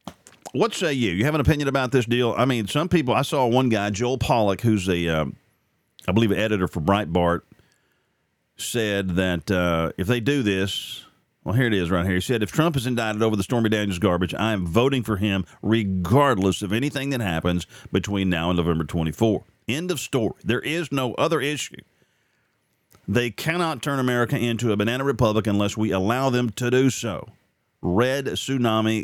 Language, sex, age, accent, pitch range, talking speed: English, male, 40-59, American, 95-125 Hz, 190 wpm